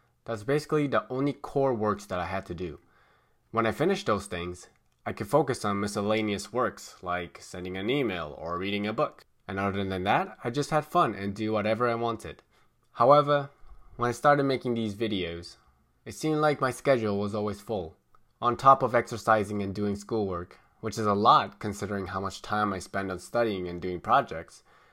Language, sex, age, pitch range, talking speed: English, male, 20-39, 95-135 Hz, 195 wpm